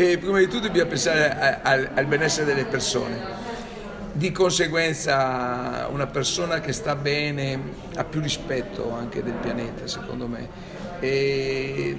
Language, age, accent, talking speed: English, 50-69, Italian, 140 wpm